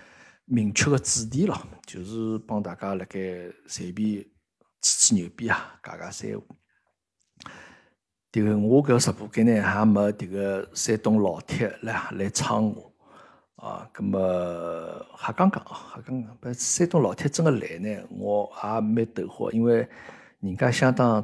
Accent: native